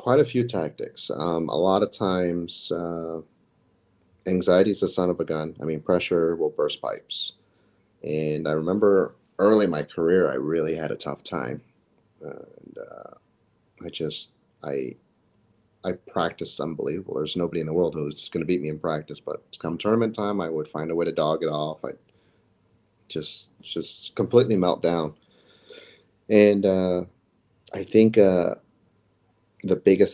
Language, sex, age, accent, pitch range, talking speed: English, male, 30-49, American, 75-100 Hz, 165 wpm